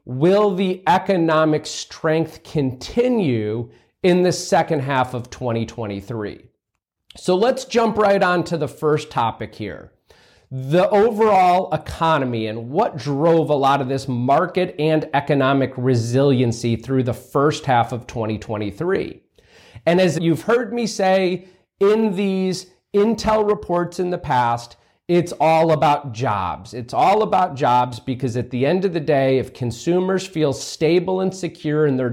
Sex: male